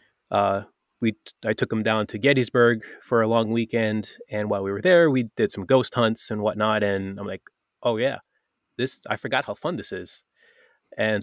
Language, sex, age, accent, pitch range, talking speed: English, male, 20-39, American, 105-120 Hz, 200 wpm